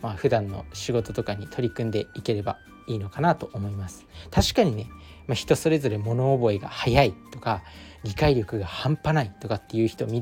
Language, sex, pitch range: Japanese, male, 105-150 Hz